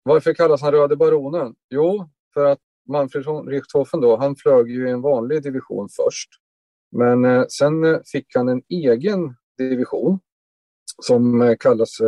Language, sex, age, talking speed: Swedish, male, 30-49, 140 wpm